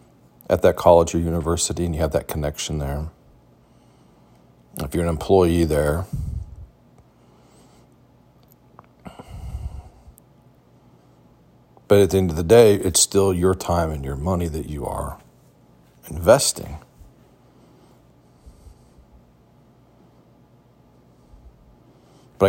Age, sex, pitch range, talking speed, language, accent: 40-59, male, 75-95 Hz, 95 wpm, English, American